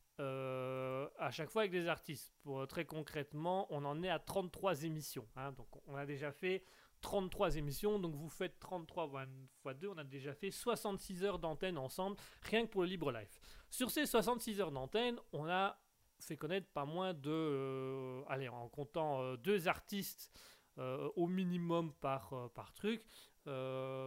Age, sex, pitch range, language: 30-49, male, 135-185 Hz, French